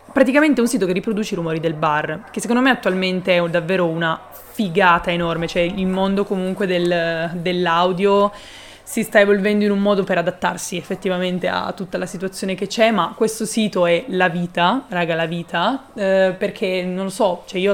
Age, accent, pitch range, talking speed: 20-39, native, 175-210 Hz, 190 wpm